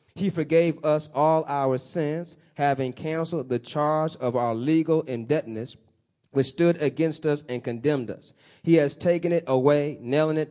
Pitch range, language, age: 130-155 Hz, English, 30-49